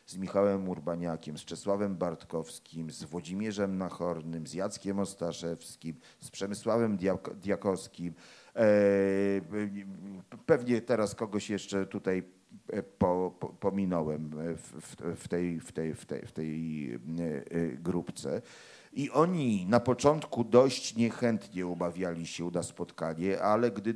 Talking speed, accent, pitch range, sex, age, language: 100 wpm, native, 85-105 Hz, male, 40-59, Polish